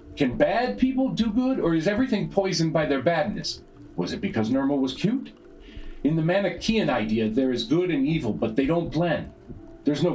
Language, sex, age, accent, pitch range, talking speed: English, male, 40-59, American, 125-195 Hz, 195 wpm